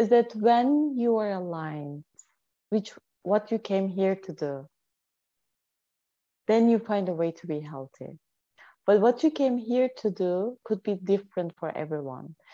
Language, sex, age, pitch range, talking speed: English, female, 30-49, 180-225 Hz, 160 wpm